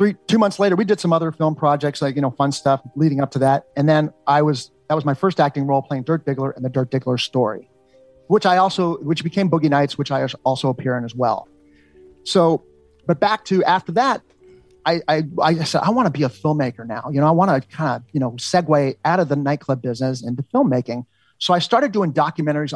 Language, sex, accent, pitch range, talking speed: English, male, American, 130-160 Hz, 230 wpm